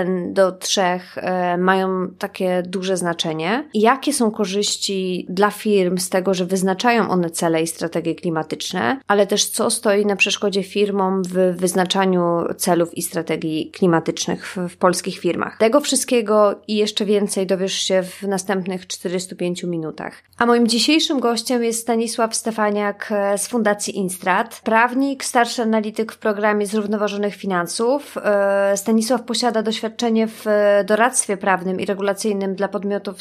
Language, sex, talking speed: Polish, female, 135 wpm